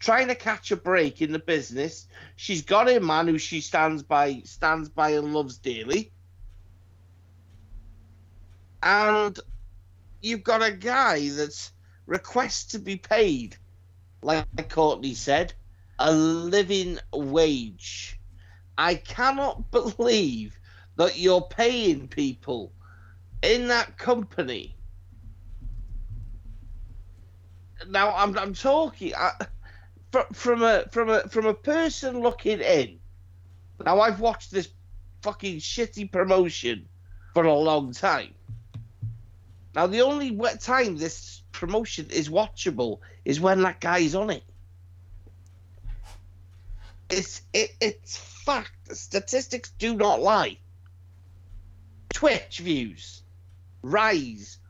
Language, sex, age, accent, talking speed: English, male, 50-69, British, 105 wpm